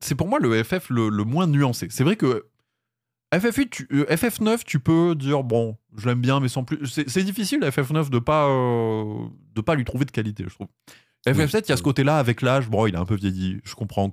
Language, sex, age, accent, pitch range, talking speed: French, male, 20-39, French, 95-125 Hz, 240 wpm